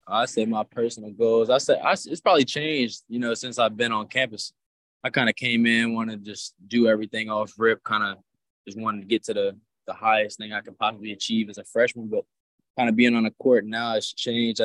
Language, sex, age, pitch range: English, male, 20-39, 105-125 Hz